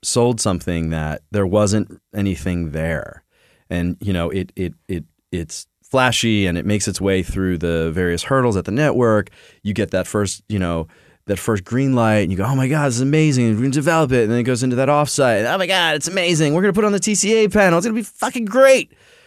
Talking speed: 240 wpm